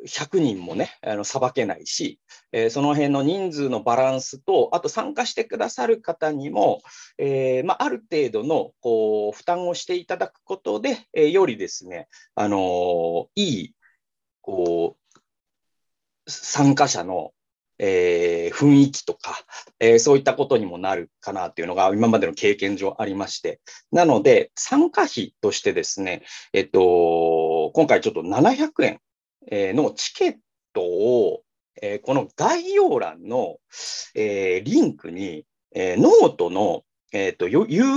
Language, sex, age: Japanese, male, 40-59